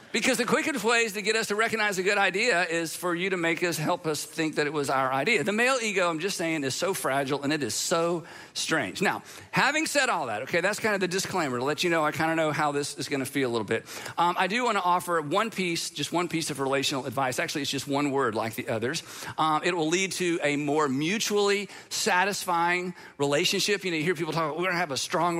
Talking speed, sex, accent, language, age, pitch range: 260 wpm, male, American, English, 50-69, 150-200 Hz